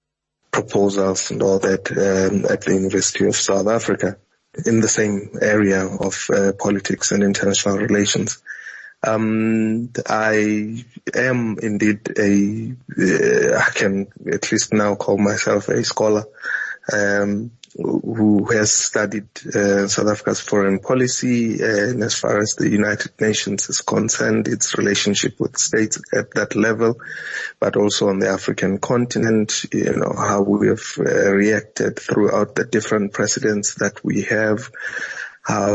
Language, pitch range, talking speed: English, 100-110 Hz, 140 wpm